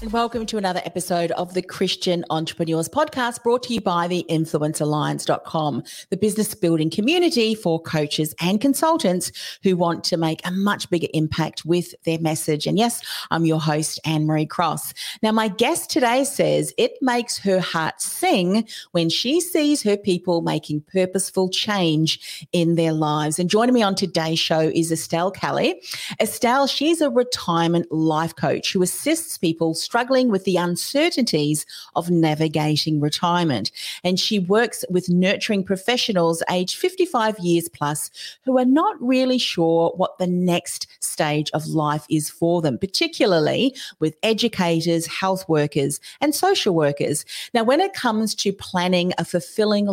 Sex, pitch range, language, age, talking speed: female, 160-220 Hz, English, 40-59, 155 wpm